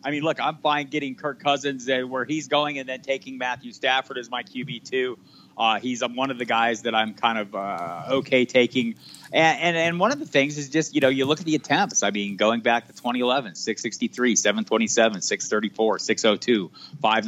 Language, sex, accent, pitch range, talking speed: English, male, American, 115-155 Hz, 225 wpm